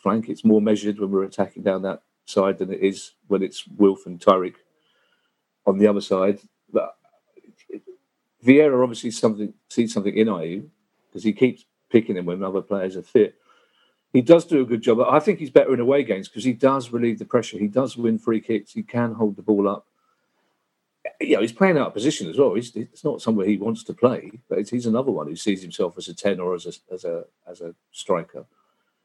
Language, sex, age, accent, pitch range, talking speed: English, male, 50-69, British, 105-150 Hz, 220 wpm